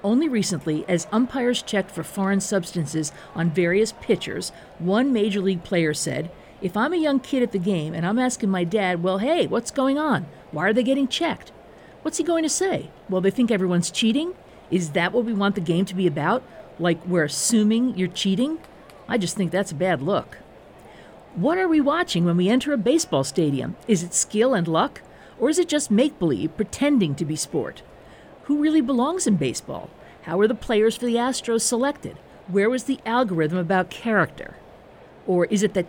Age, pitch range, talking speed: 50-69, 175-235 Hz, 195 wpm